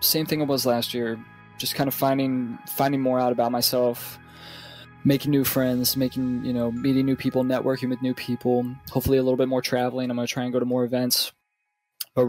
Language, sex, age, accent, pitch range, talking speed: English, male, 20-39, American, 115-130 Hz, 210 wpm